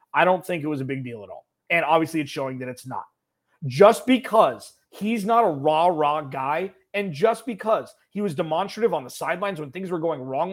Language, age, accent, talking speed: English, 30-49, American, 220 wpm